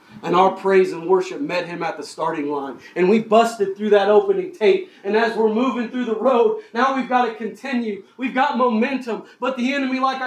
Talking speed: 215 wpm